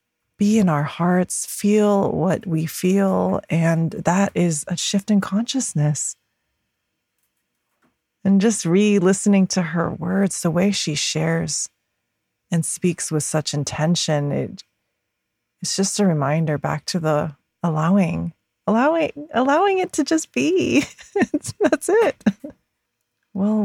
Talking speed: 120 wpm